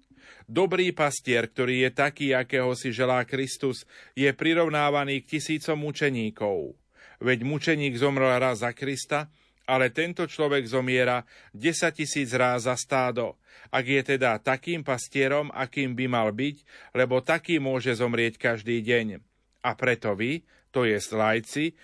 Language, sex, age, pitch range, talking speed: Slovak, male, 40-59, 115-145 Hz, 135 wpm